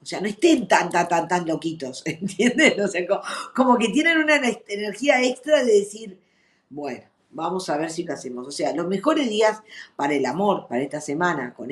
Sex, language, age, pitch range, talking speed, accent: female, Spanish, 50-69, 155-200 Hz, 205 wpm, Argentinian